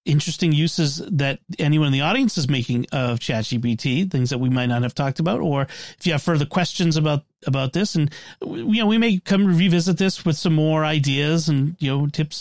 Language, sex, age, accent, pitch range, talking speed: English, male, 40-59, American, 140-185 Hz, 220 wpm